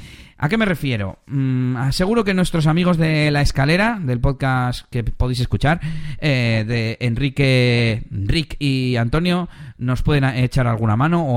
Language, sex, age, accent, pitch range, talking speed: Spanish, male, 30-49, Spanish, 125-175 Hz, 155 wpm